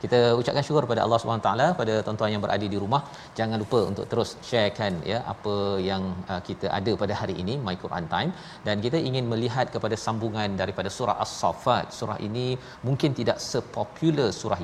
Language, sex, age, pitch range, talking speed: Malayalam, male, 40-59, 100-120 Hz, 185 wpm